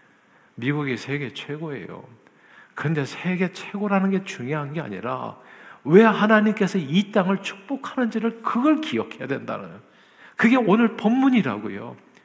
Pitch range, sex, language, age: 135-205 Hz, male, Korean, 50-69